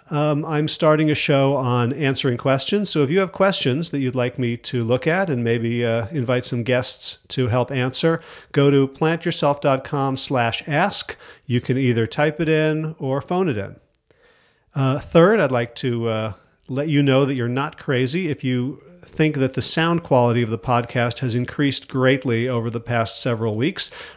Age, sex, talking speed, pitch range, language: 40-59, male, 185 wpm, 120-150 Hz, English